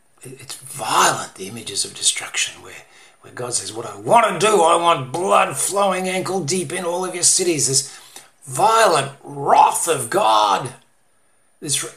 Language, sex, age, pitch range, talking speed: English, male, 50-69, 130-185 Hz, 160 wpm